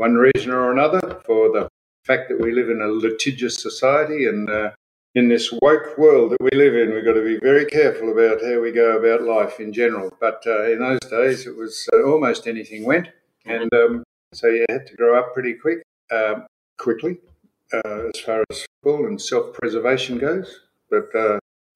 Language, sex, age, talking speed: English, male, 60-79, 195 wpm